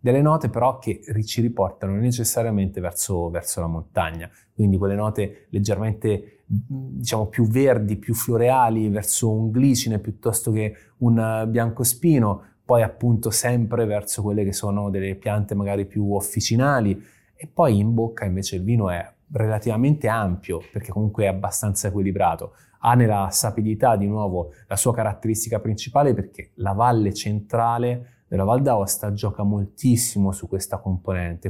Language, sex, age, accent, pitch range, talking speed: Italian, male, 20-39, native, 100-115 Hz, 145 wpm